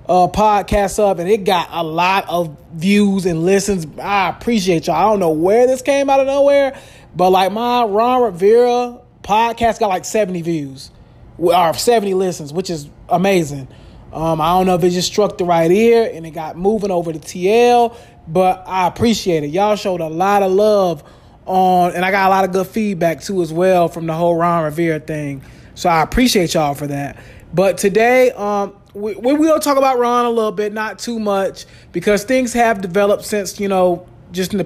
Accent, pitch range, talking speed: American, 175-220 Hz, 205 wpm